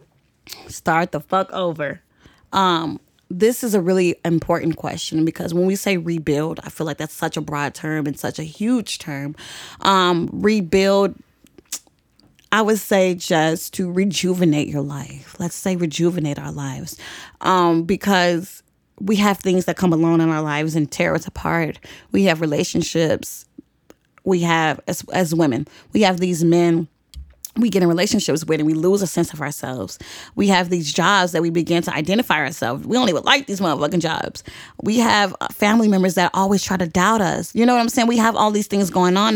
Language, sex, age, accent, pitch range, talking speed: English, female, 20-39, American, 160-200 Hz, 185 wpm